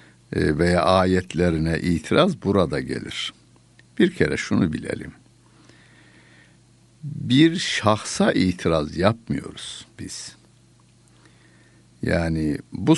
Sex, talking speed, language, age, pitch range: male, 75 wpm, Turkish, 60-79, 80-110 Hz